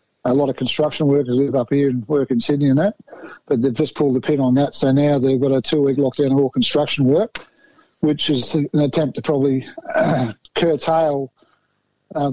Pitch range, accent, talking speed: 140-160 Hz, Australian, 205 wpm